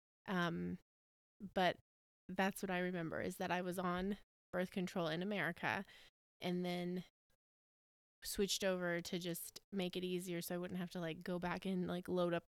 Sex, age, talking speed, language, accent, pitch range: female, 20-39, 175 wpm, English, American, 180-205 Hz